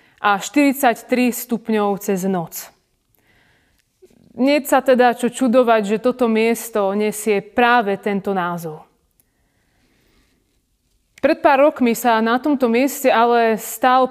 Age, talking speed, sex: 30-49, 110 wpm, female